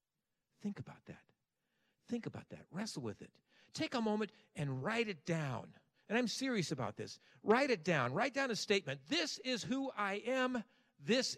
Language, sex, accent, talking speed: English, male, American, 180 wpm